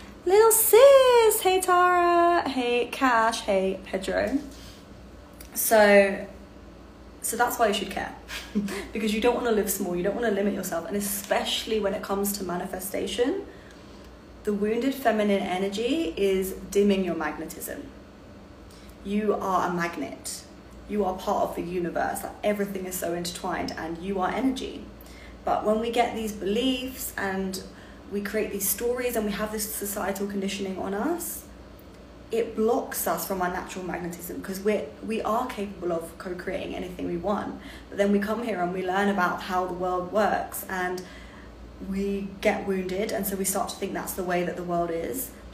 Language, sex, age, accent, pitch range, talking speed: English, female, 20-39, British, 180-220 Hz, 165 wpm